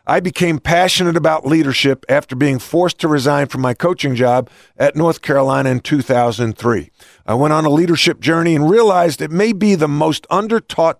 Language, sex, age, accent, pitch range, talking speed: English, male, 50-69, American, 130-165 Hz, 180 wpm